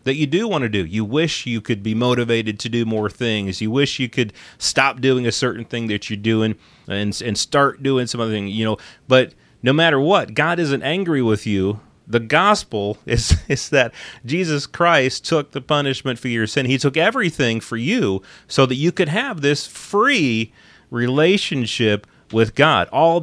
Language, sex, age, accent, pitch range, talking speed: English, male, 30-49, American, 105-145 Hz, 195 wpm